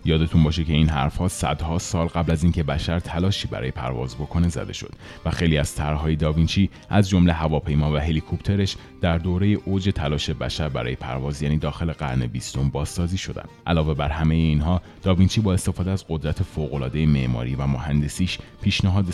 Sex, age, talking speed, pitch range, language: male, 30-49, 175 wpm, 75-90 Hz, Persian